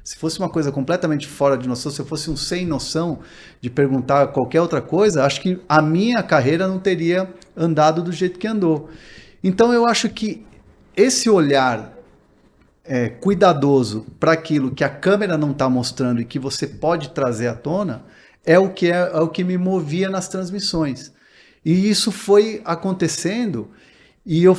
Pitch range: 140-195 Hz